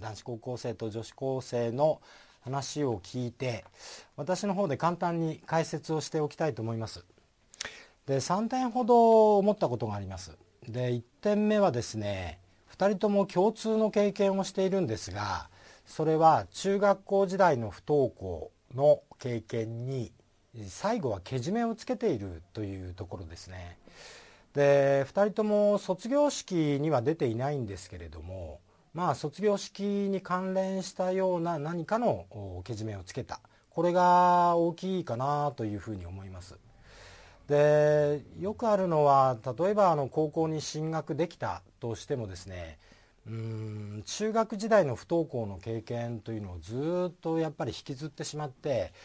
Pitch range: 110-180 Hz